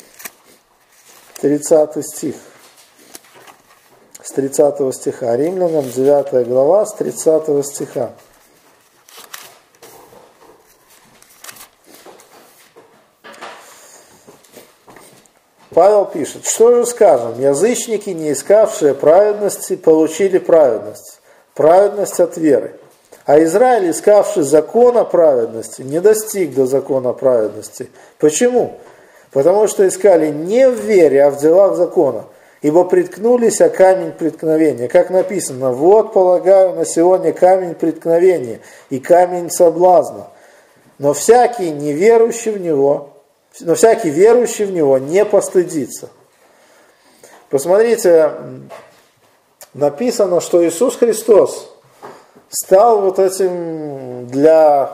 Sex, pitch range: male, 150-215 Hz